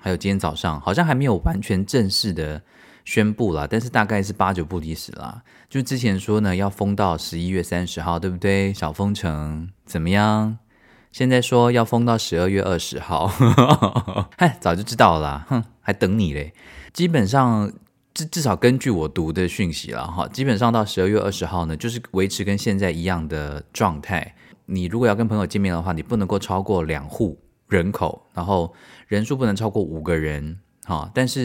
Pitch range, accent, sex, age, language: 85-115 Hz, native, male, 20-39, Chinese